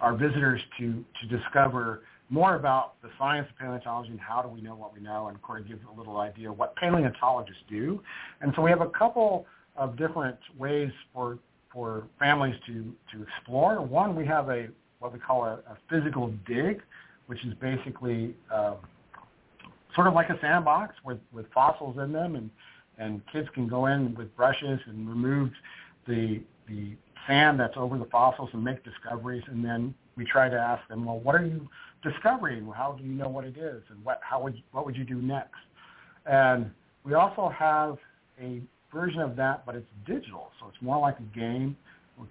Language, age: English, 50-69